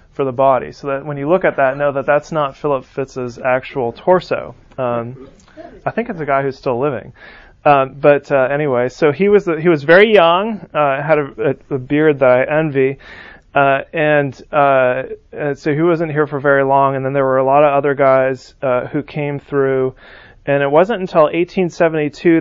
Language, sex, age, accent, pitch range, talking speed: English, male, 30-49, American, 130-160 Hz, 205 wpm